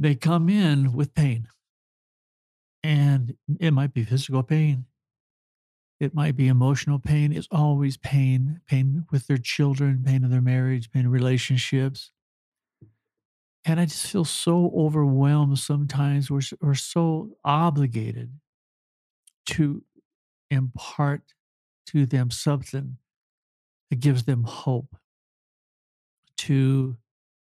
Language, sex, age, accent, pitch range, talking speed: English, male, 60-79, American, 130-150 Hz, 110 wpm